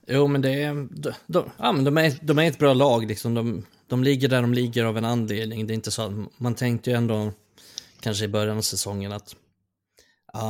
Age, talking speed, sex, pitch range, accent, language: 20-39, 230 wpm, male, 105-120 Hz, native, Swedish